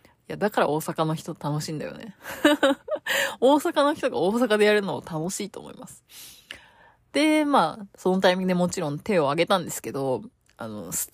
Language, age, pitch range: Japanese, 20-39, 165-255 Hz